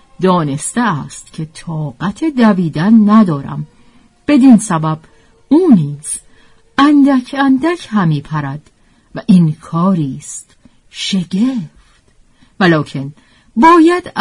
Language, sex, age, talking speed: Persian, female, 50-69, 80 wpm